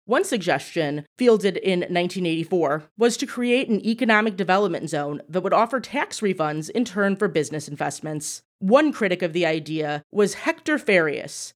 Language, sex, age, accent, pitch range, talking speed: English, female, 30-49, American, 165-225 Hz, 155 wpm